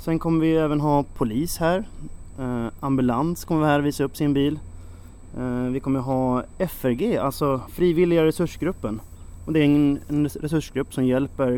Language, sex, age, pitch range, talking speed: Swedish, male, 30-49, 120-150 Hz, 160 wpm